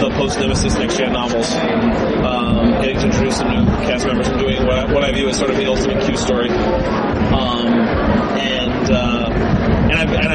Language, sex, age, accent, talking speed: English, male, 30-49, American, 180 wpm